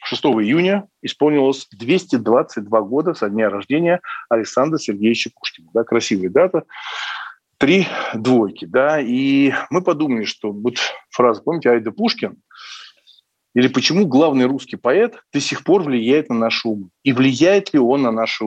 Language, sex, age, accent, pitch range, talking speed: Russian, male, 40-59, native, 115-145 Hz, 145 wpm